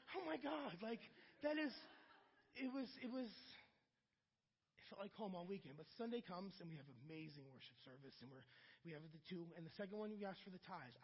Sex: male